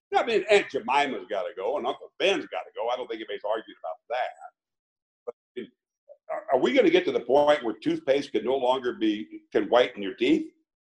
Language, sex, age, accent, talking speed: English, male, 60-79, American, 230 wpm